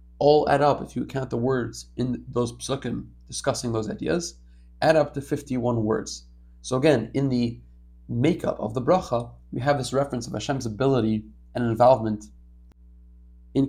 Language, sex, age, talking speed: English, male, 30-49, 160 wpm